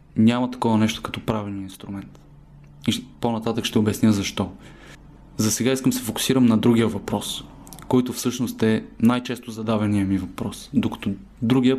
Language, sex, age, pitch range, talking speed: Bulgarian, male, 20-39, 110-120 Hz, 150 wpm